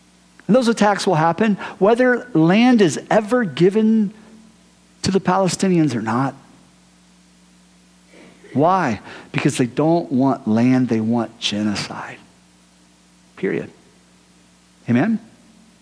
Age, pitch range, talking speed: 50-69, 145-225 Hz, 100 wpm